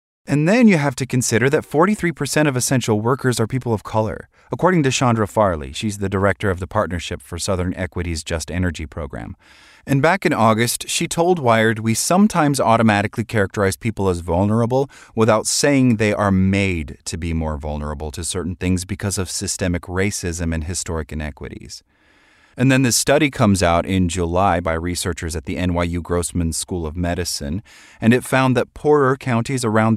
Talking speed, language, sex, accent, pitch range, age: 175 wpm, English, male, American, 90-125 Hz, 30-49